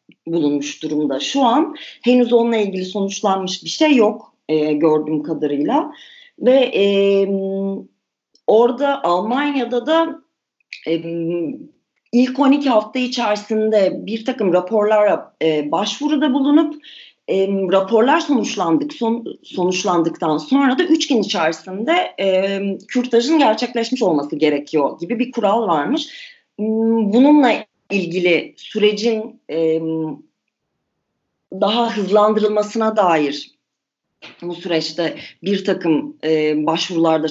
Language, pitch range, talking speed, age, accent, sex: Turkish, 170-265 Hz, 100 wpm, 40-59, native, female